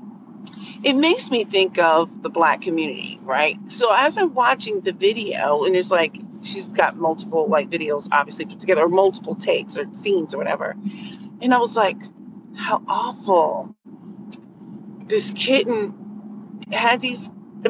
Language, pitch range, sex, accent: English, 195-230 Hz, female, American